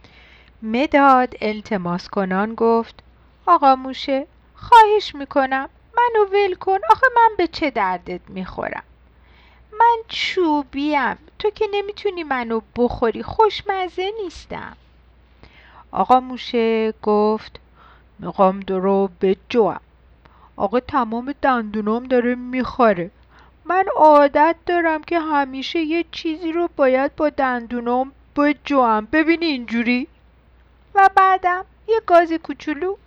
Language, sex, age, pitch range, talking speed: Persian, female, 50-69, 210-340 Hz, 105 wpm